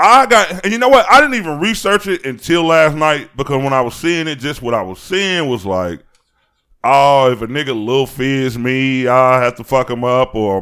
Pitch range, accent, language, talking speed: 100-145 Hz, American, English, 230 wpm